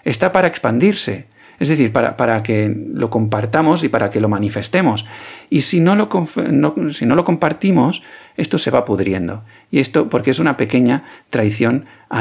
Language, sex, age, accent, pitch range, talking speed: Spanish, male, 40-59, Spanish, 110-145 Hz, 175 wpm